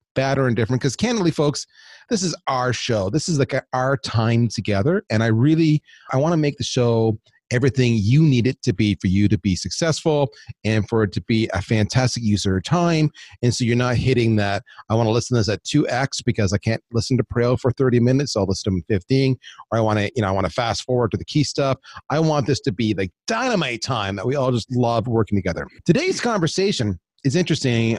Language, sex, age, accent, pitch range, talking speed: English, male, 30-49, American, 105-135 Hz, 225 wpm